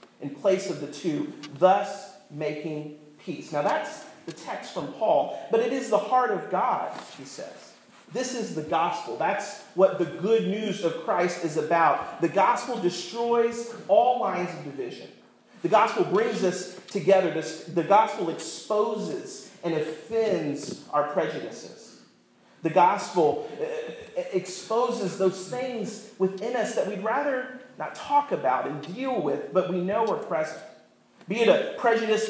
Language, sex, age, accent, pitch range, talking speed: English, male, 40-59, American, 175-230 Hz, 150 wpm